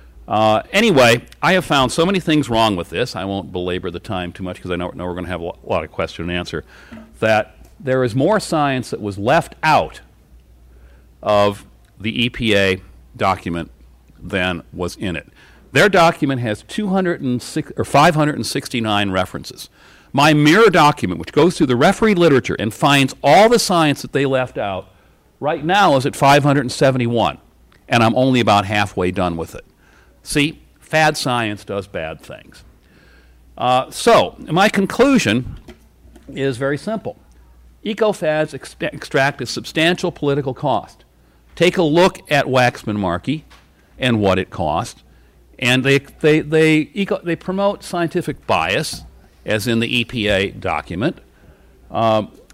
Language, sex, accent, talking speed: English, male, American, 145 wpm